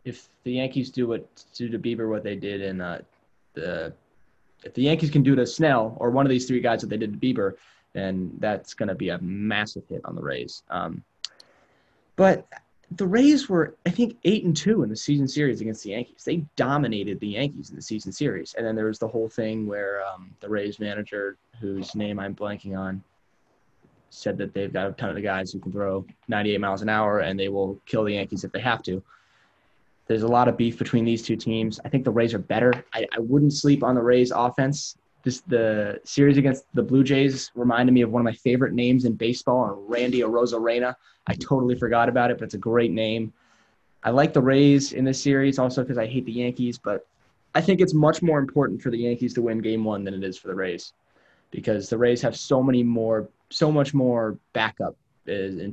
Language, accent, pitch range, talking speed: English, American, 105-130 Hz, 220 wpm